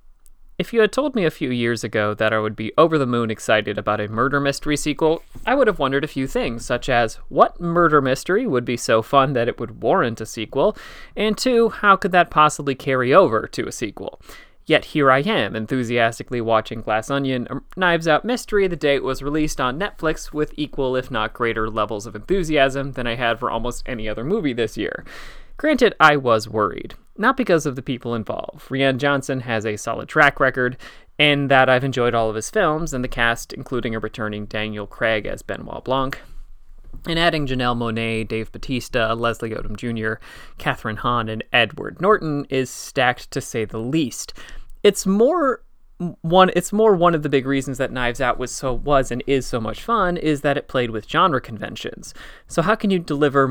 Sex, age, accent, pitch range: male, 30-49, American, 115-150 Hz